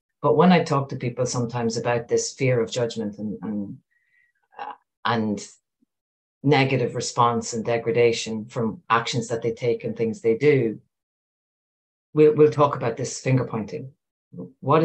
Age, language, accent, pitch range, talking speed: 40-59, English, Irish, 110-130 Hz, 135 wpm